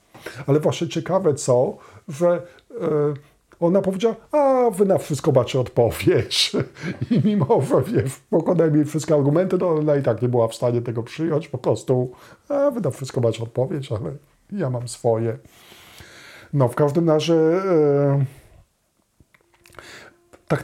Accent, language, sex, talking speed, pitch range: native, Polish, male, 140 wpm, 130-160 Hz